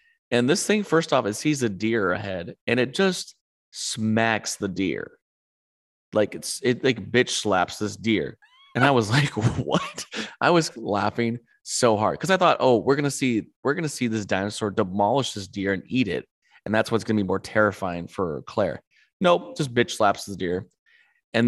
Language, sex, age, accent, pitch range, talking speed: English, male, 20-39, American, 105-135 Hz, 200 wpm